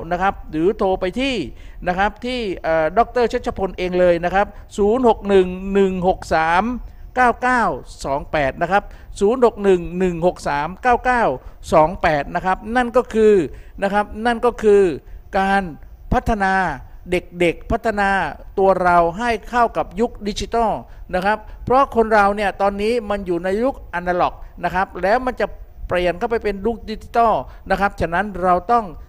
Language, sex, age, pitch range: Thai, male, 50-69, 180-225 Hz